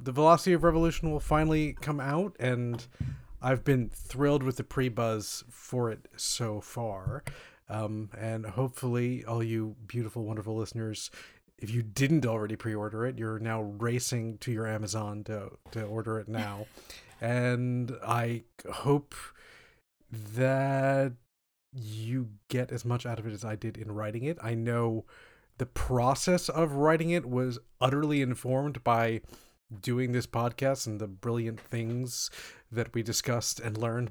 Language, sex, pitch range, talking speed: English, male, 110-130 Hz, 150 wpm